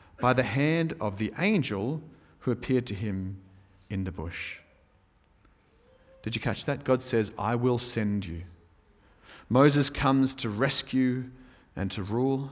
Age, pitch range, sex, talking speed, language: 40-59, 95-125 Hz, male, 145 wpm, English